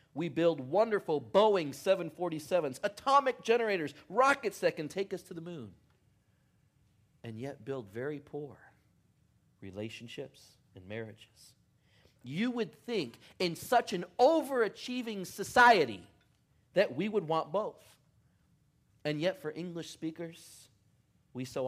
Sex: male